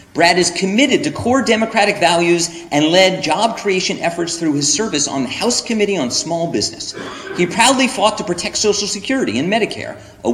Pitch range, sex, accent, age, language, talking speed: 155-220 Hz, male, American, 40-59, English, 185 wpm